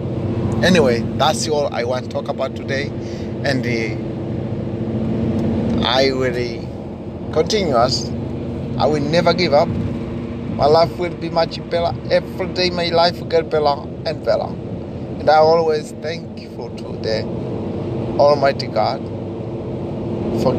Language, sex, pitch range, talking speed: English, male, 115-125 Hz, 135 wpm